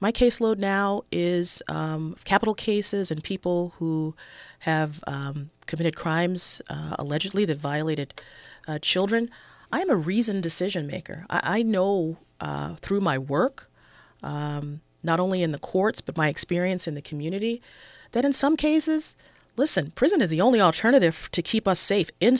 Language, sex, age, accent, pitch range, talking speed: English, female, 40-59, American, 155-200 Hz, 160 wpm